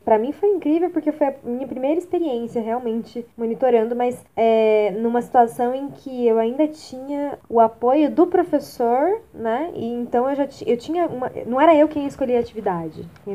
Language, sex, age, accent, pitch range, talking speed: Portuguese, female, 20-39, Brazilian, 205-245 Hz, 190 wpm